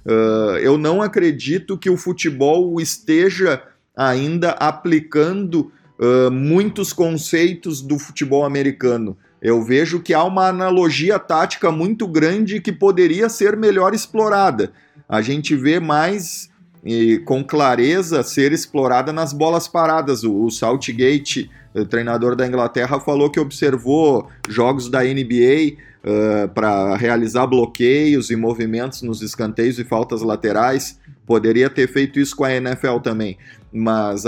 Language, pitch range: Portuguese, 115-155 Hz